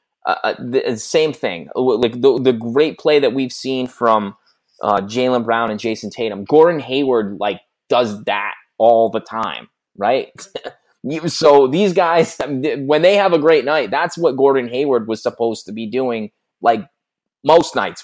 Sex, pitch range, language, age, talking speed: male, 110-150 Hz, English, 20-39, 165 wpm